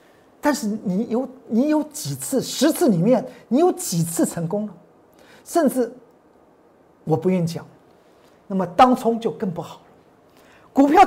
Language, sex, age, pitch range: Chinese, male, 50-69, 210-345 Hz